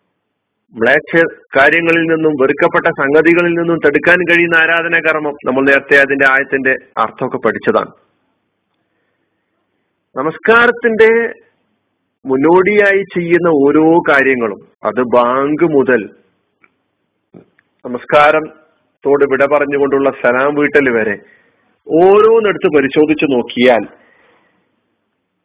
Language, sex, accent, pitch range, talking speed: Malayalam, male, native, 135-170 Hz, 60 wpm